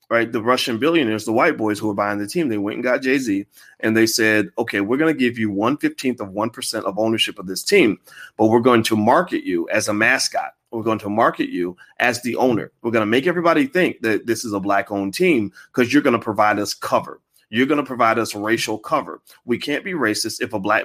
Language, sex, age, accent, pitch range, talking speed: English, male, 30-49, American, 105-125 Hz, 250 wpm